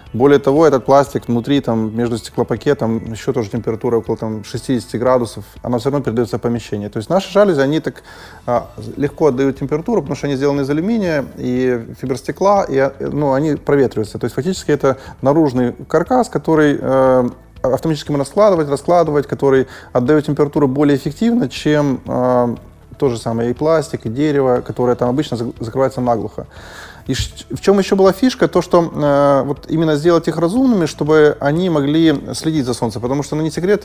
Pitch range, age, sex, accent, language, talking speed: 125-155 Hz, 20-39, male, native, Russian, 175 wpm